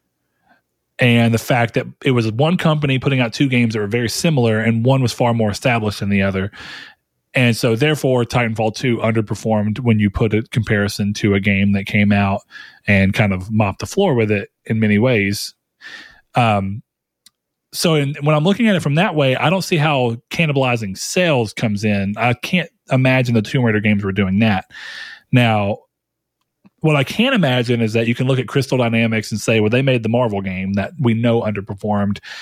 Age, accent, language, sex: 30-49, American, English, male